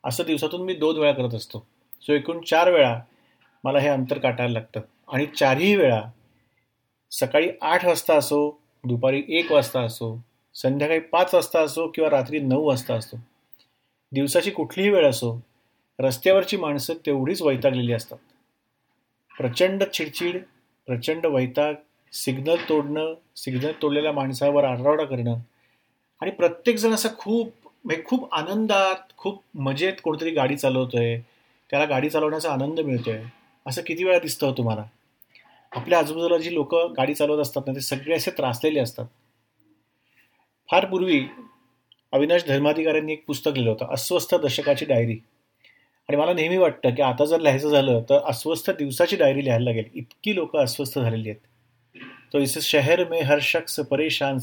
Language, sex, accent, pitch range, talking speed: Marathi, male, native, 125-165 Hz, 120 wpm